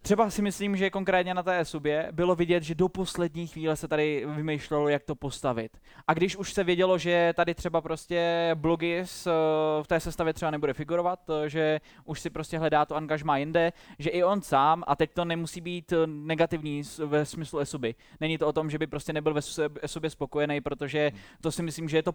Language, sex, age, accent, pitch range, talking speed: Czech, male, 20-39, native, 145-165 Hz, 205 wpm